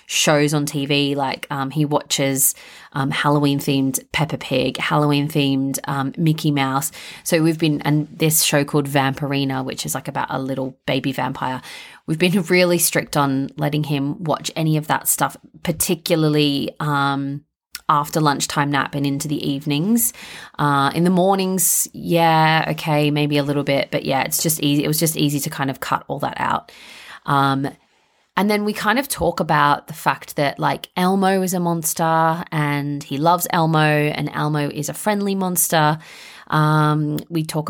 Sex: female